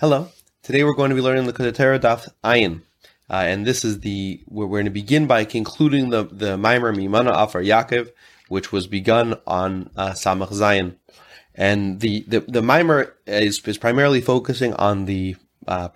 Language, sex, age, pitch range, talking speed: English, male, 30-49, 105-130 Hz, 175 wpm